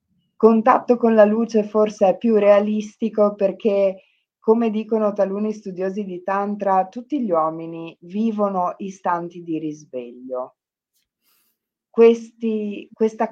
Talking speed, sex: 105 wpm, female